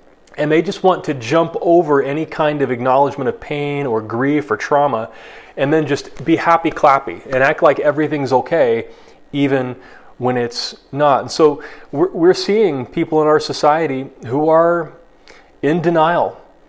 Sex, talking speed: male, 160 wpm